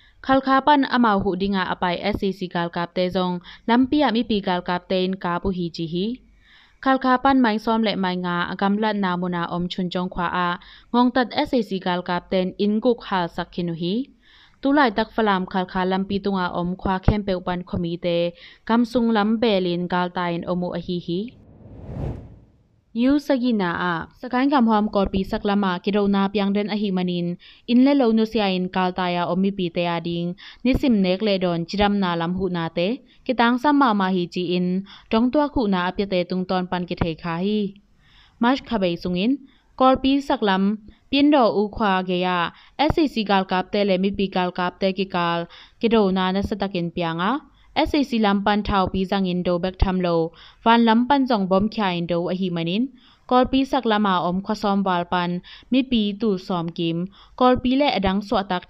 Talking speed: 120 wpm